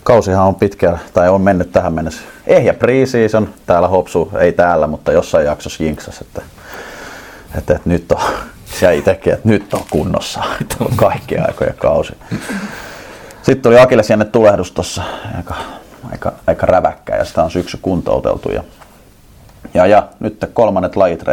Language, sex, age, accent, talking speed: Finnish, male, 30-49, native, 140 wpm